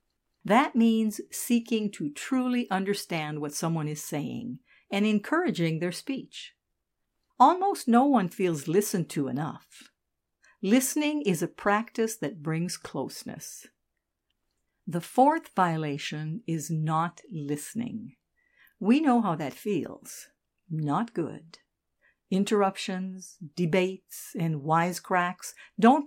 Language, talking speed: English, 105 wpm